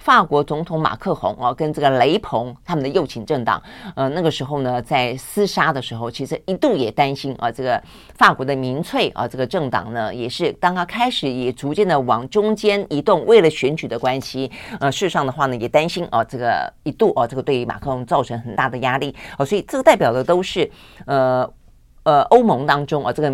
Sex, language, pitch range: female, Chinese, 125-160 Hz